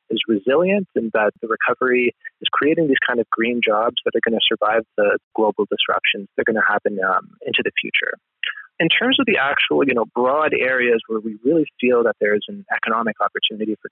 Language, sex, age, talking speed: English, male, 20-39, 215 wpm